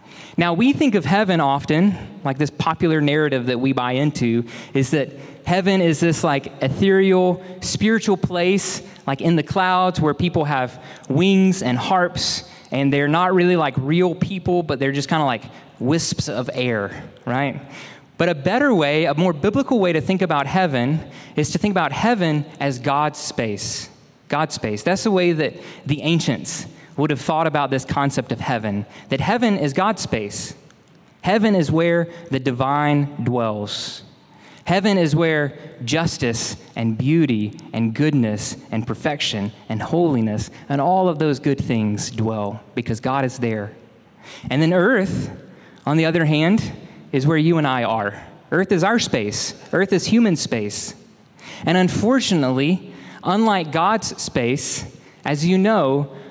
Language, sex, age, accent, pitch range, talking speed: English, male, 20-39, American, 130-180 Hz, 160 wpm